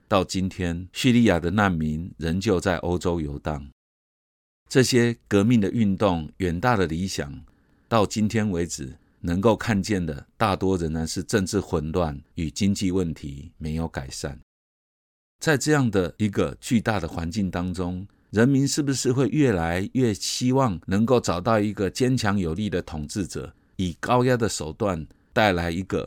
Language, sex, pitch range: Chinese, male, 80-110 Hz